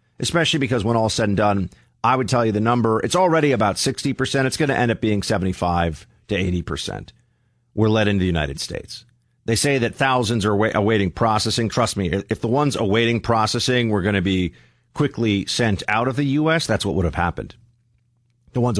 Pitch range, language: 95-120 Hz, English